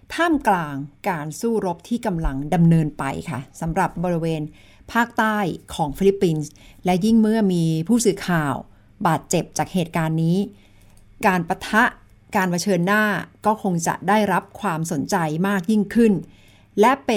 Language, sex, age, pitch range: Thai, female, 60-79, 165-220 Hz